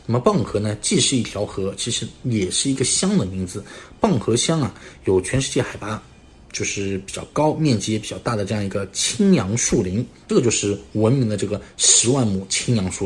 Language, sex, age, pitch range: Chinese, male, 20-39, 95-115 Hz